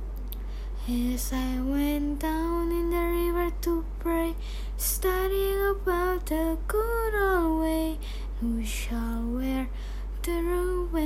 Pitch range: 265-370 Hz